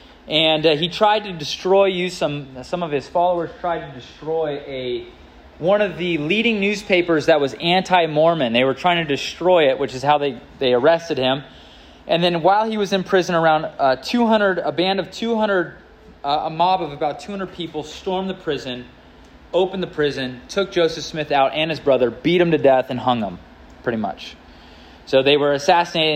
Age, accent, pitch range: 20-39, American, 135-190 Hz